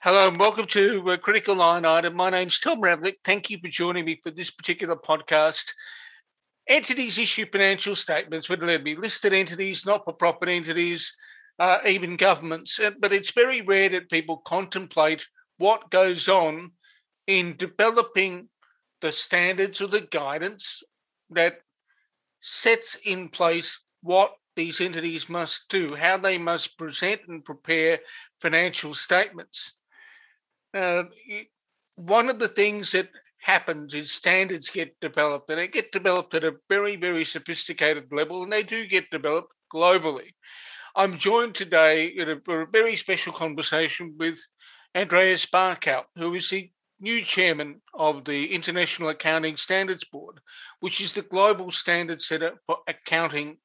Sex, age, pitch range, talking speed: male, 50-69, 165-200 Hz, 140 wpm